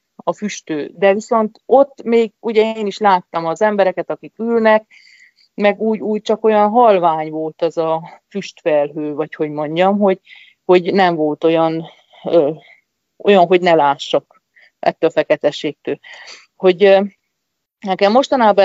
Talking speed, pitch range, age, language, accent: 140 wpm, 175-215 Hz, 30-49, English, Finnish